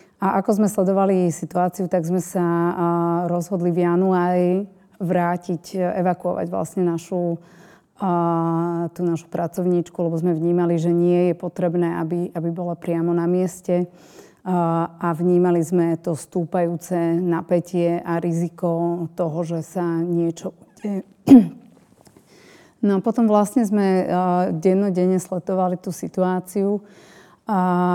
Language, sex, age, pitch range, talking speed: Slovak, female, 30-49, 170-185 Hz, 120 wpm